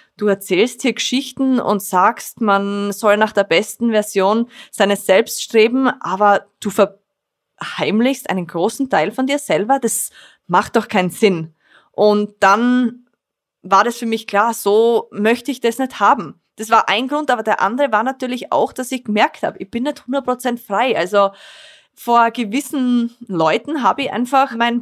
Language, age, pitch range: German, 20-39, 195-250 Hz